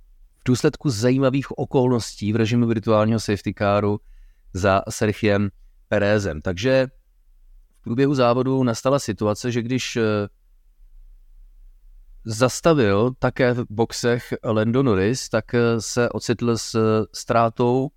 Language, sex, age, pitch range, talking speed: Czech, male, 30-49, 100-120 Hz, 100 wpm